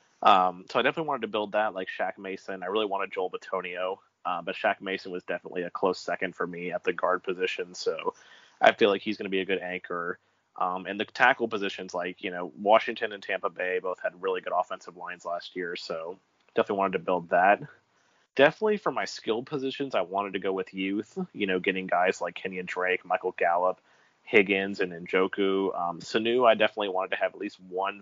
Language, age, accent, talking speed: English, 30-49, American, 215 wpm